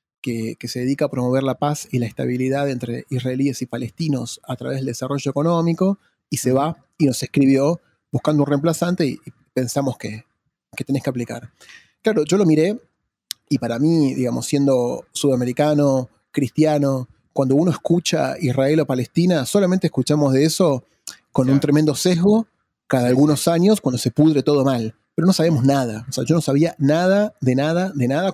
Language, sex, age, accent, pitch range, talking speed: Spanish, male, 30-49, Argentinian, 130-160 Hz, 175 wpm